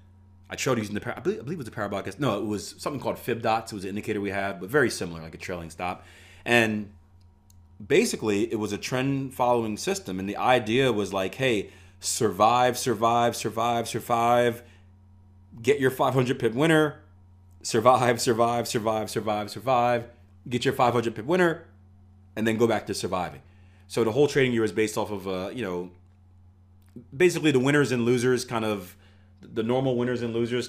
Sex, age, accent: male, 30-49, American